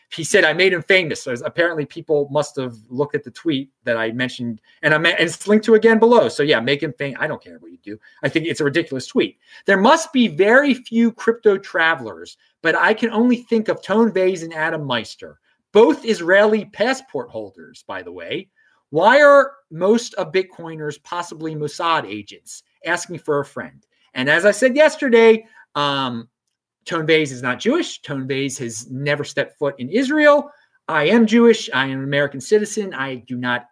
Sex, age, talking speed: male, 30-49, 190 wpm